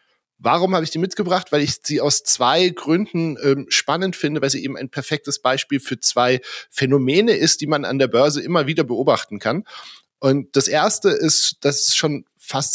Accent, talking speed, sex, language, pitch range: German, 195 wpm, male, German, 125-160 Hz